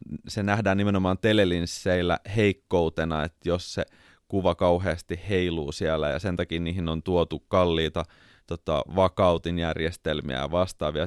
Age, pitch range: 30-49, 85-115 Hz